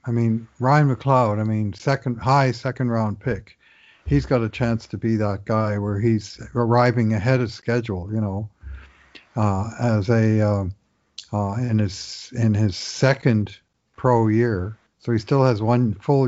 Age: 50-69